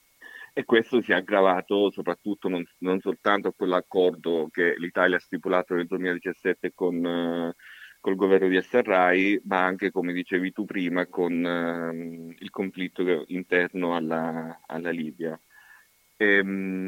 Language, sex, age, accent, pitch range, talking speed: Italian, male, 30-49, native, 85-100 Hz, 135 wpm